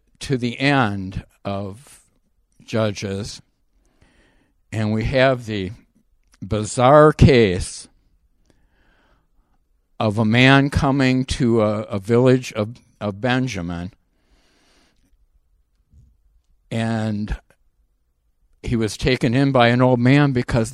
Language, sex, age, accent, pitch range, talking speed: English, male, 60-79, American, 100-130 Hz, 95 wpm